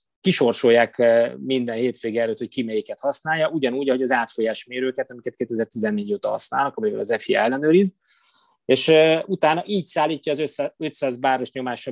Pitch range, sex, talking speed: 120-155 Hz, male, 145 wpm